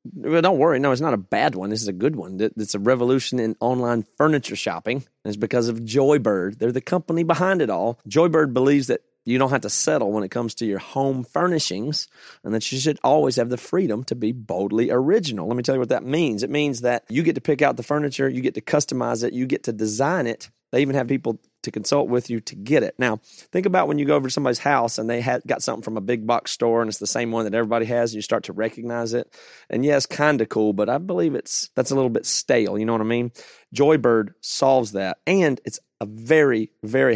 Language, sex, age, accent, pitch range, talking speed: English, male, 30-49, American, 110-135 Hz, 250 wpm